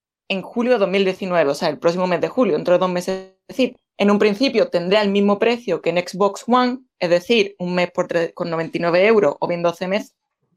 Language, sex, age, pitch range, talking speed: English, female, 20-39, 180-210 Hz, 220 wpm